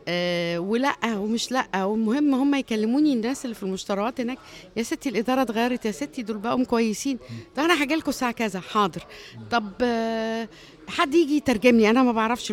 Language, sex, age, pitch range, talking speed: Arabic, female, 50-69, 175-230 Hz, 170 wpm